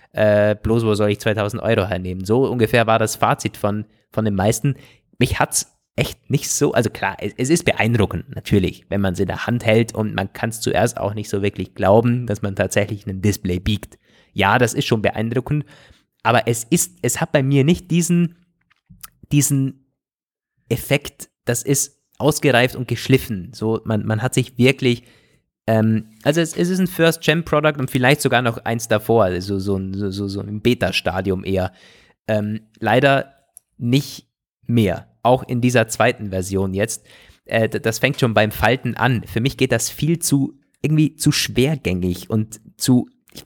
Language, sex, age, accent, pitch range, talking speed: German, male, 20-39, German, 105-135 Hz, 175 wpm